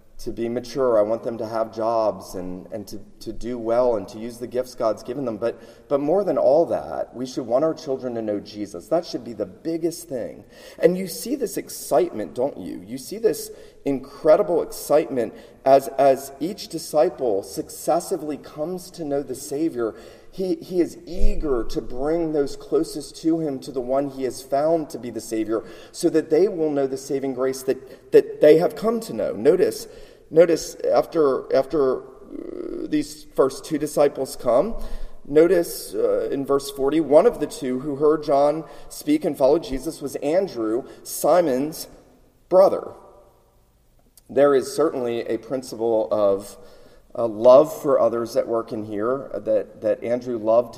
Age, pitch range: 30-49, 115-160 Hz